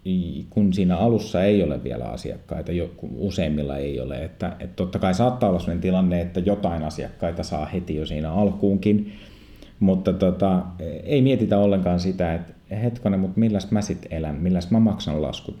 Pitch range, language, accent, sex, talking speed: 85-105 Hz, Finnish, native, male, 165 wpm